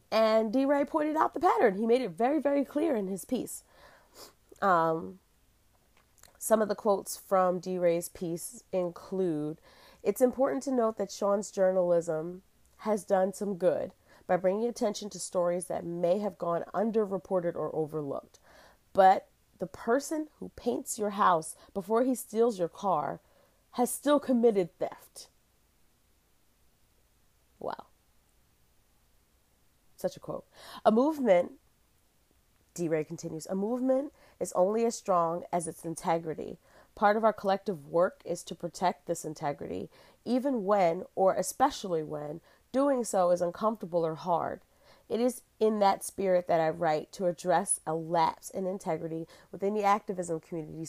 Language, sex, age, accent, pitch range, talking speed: English, female, 30-49, American, 170-220 Hz, 140 wpm